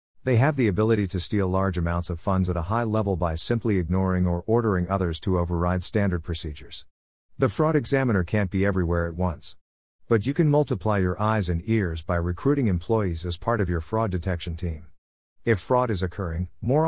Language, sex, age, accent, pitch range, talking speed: English, male, 50-69, American, 85-115 Hz, 195 wpm